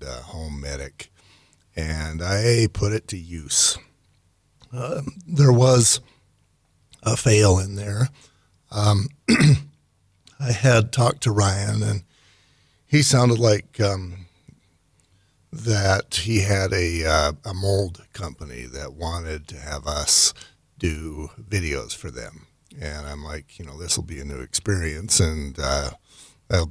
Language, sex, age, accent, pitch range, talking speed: English, male, 50-69, American, 85-115 Hz, 130 wpm